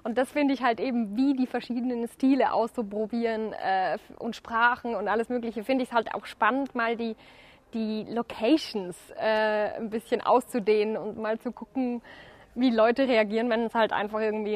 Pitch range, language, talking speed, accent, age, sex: 220-275 Hz, German, 175 wpm, German, 20-39, female